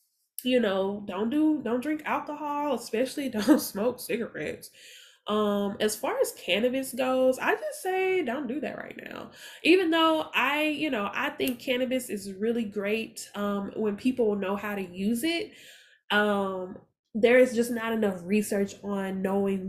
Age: 10-29